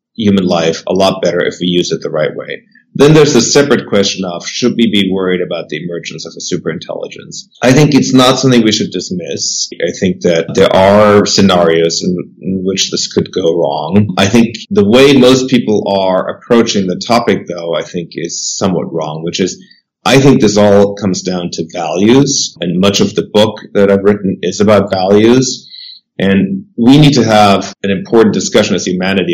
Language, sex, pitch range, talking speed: English, male, 95-120 Hz, 195 wpm